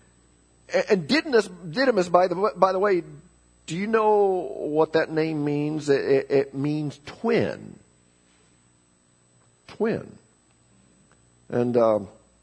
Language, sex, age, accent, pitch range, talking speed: English, male, 50-69, American, 105-145 Hz, 100 wpm